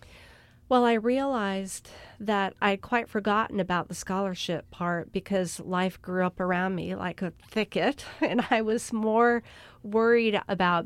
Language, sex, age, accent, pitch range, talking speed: English, female, 40-59, American, 175-210 Hz, 145 wpm